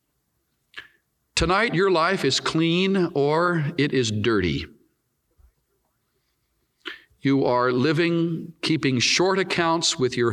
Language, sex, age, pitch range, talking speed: English, male, 60-79, 105-150 Hz, 100 wpm